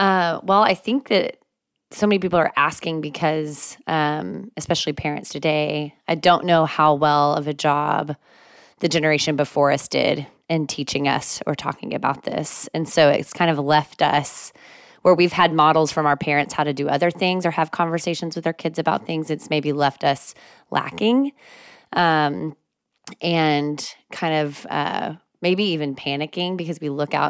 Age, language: 20-39, English